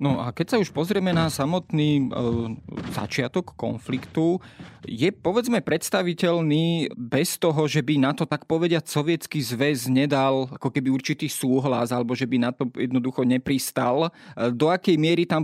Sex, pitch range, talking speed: male, 130-160 Hz, 150 wpm